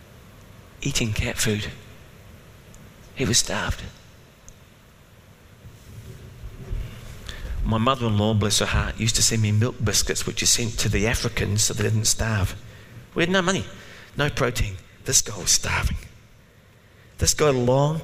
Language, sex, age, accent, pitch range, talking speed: English, male, 40-59, British, 105-130 Hz, 135 wpm